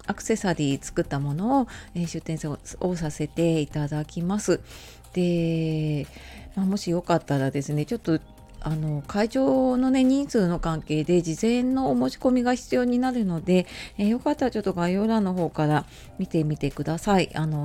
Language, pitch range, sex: Japanese, 155-215 Hz, female